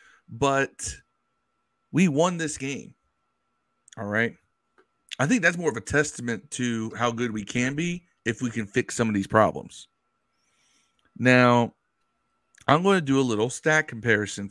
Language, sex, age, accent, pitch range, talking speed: English, male, 40-59, American, 110-140 Hz, 155 wpm